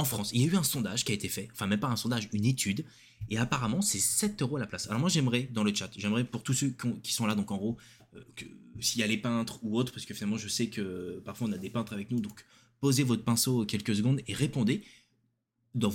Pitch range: 105-125 Hz